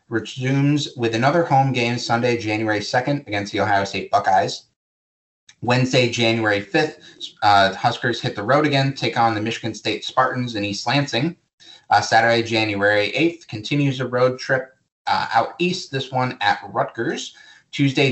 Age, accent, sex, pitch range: 30-49, American, male, 110-140 Hz